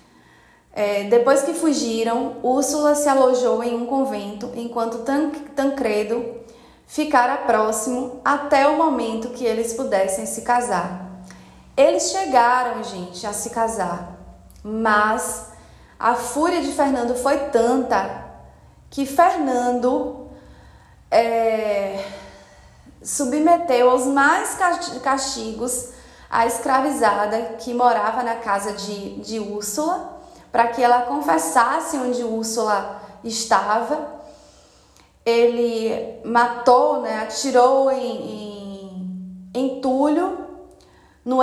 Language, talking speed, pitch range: Portuguese, 95 wpm, 220-270 Hz